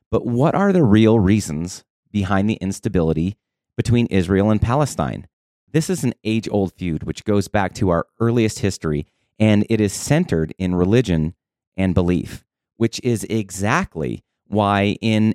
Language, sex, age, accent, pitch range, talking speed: English, male, 30-49, American, 90-120 Hz, 150 wpm